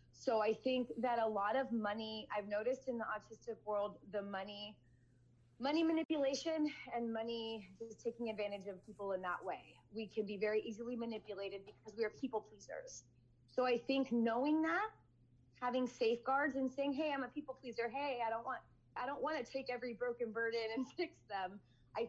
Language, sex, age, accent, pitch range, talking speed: English, female, 30-49, American, 200-250 Hz, 185 wpm